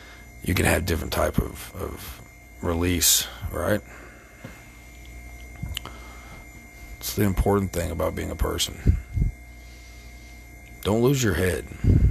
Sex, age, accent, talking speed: male, 40-59, American, 105 wpm